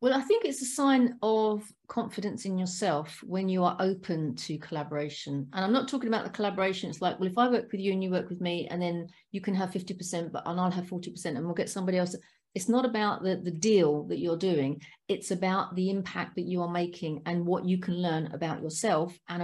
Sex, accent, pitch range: female, British, 180-245 Hz